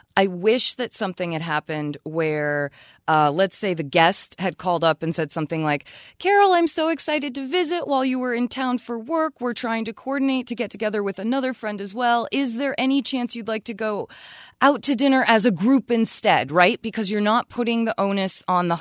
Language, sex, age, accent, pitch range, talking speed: English, female, 20-39, American, 155-230 Hz, 215 wpm